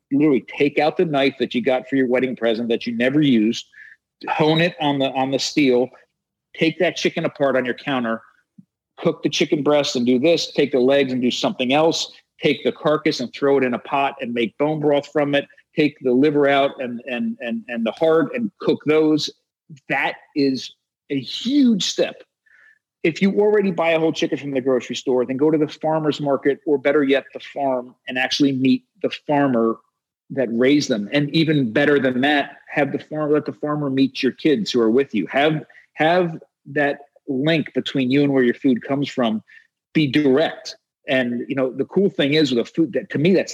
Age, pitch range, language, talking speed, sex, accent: 40-59, 125-155 Hz, English, 210 wpm, male, American